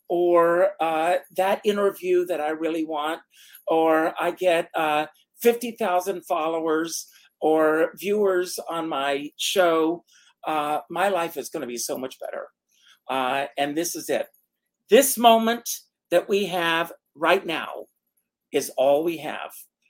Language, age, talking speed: English, 50-69, 135 wpm